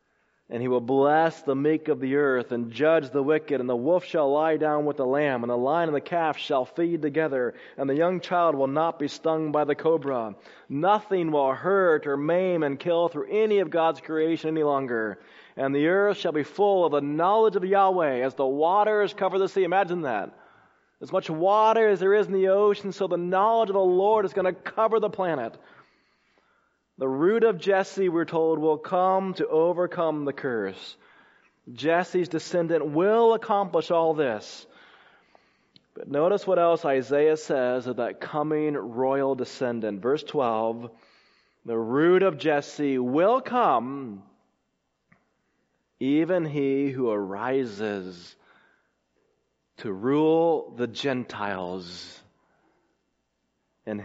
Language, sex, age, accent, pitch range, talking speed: English, male, 30-49, American, 135-185 Hz, 160 wpm